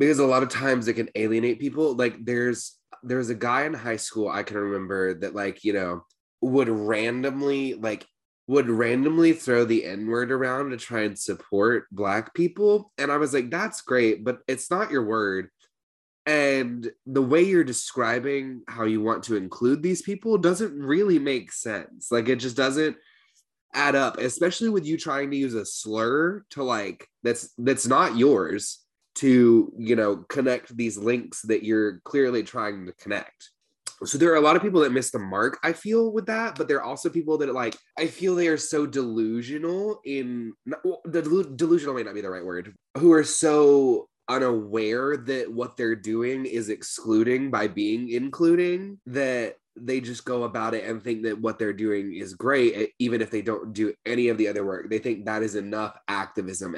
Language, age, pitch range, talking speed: English, 20-39, 110-150 Hz, 190 wpm